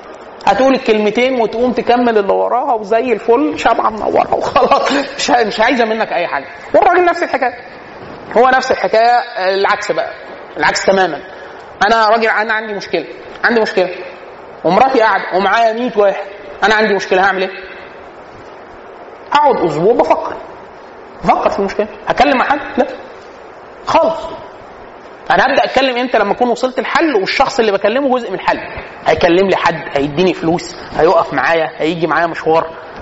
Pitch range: 195-250 Hz